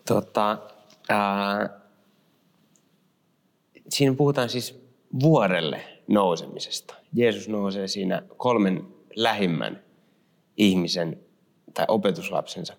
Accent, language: native, Finnish